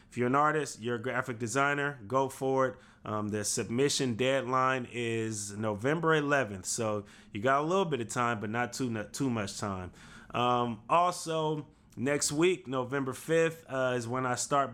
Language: English